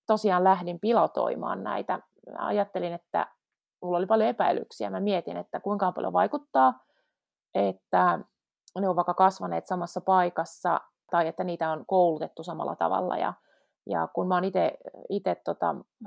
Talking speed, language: 135 wpm, Finnish